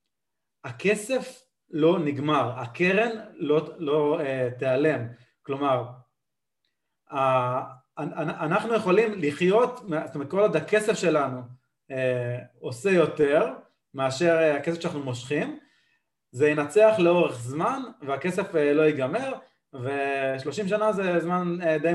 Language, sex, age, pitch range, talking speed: Hebrew, male, 30-49, 130-175 Hz, 95 wpm